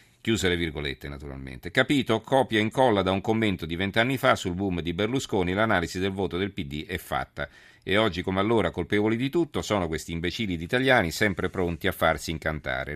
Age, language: 40-59, Italian